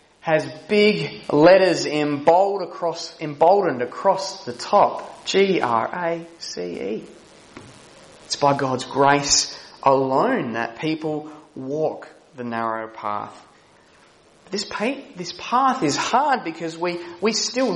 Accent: Australian